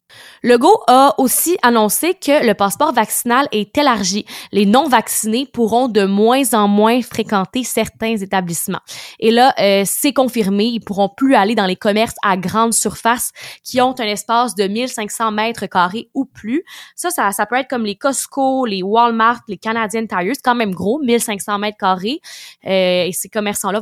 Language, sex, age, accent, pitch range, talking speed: French, female, 20-39, Canadian, 200-250 Hz, 175 wpm